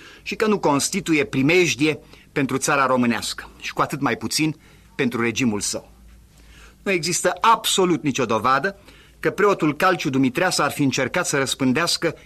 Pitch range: 130-170 Hz